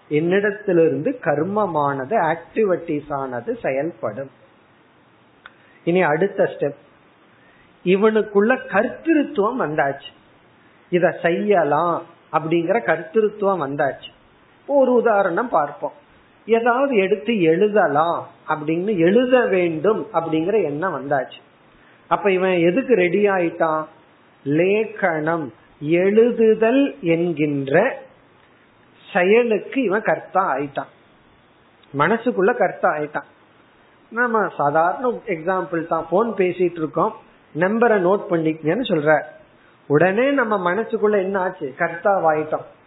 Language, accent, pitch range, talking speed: Tamil, native, 160-215 Hz, 55 wpm